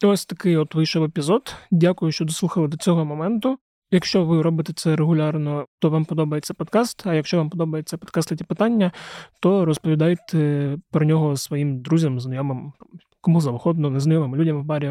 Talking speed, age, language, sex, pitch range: 160 wpm, 20-39, Ukrainian, male, 150-170 Hz